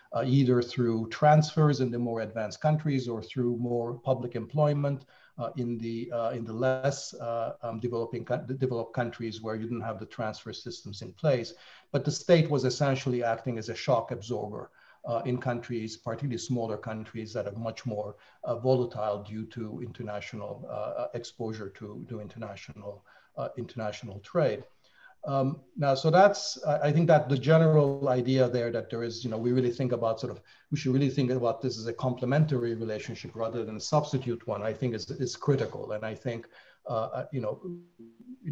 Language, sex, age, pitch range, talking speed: English, male, 50-69, 115-135 Hz, 185 wpm